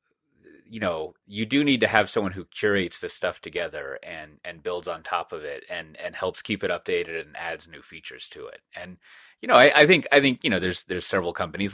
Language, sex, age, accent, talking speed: English, male, 30-49, American, 235 wpm